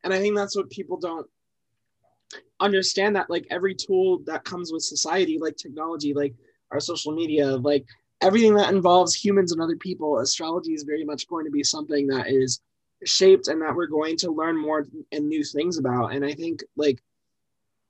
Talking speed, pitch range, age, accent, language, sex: 190 wpm, 145-195 Hz, 20-39, American, English, male